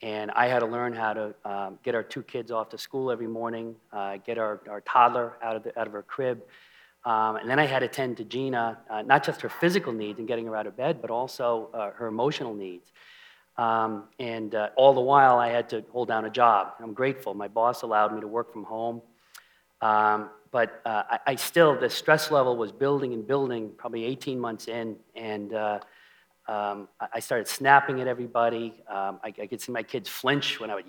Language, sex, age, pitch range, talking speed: English, male, 40-59, 110-130 Hz, 225 wpm